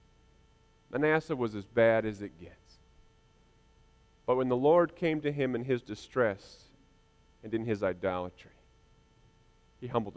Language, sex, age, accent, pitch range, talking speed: English, male, 40-59, American, 100-125 Hz, 135 wpm